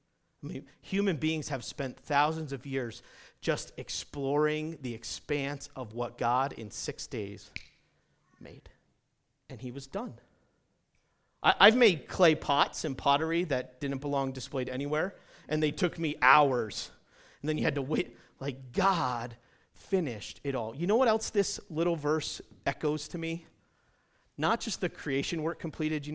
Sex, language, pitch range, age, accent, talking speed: male, English, 135-175 Hz, 40-59, American, 155 wpm